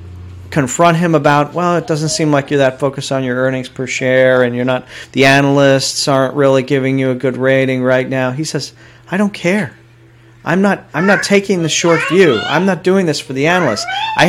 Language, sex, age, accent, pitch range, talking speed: English, male, 40-59, American, 120-155 Hz, 215 wpm